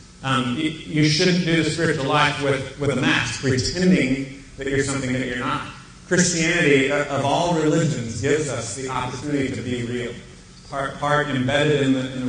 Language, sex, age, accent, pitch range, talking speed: English, male, 30-49, American, 130-150 Hz, 175 wpm